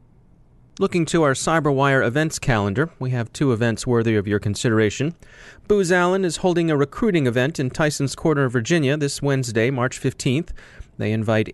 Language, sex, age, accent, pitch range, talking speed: English, male, 30-49, American, 115-140 Hz, 160 wpm